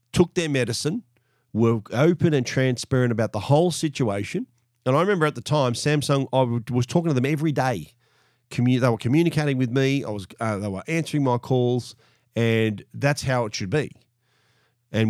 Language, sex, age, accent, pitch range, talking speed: English, male, 40-59, Australian, 110-140 Hz, 185 wpm